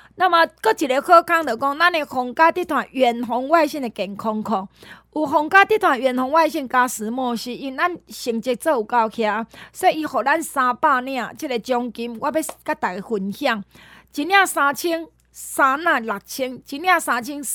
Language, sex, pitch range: Chinese, female, 235-325 Hz